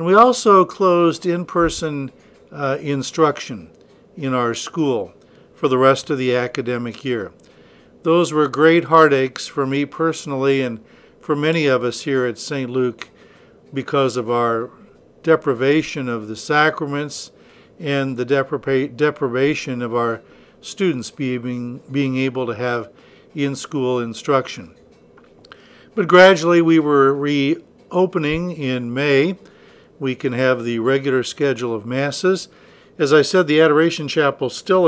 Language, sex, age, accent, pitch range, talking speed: English, male, 60-79, American, 125-150 Hz, 125 wpm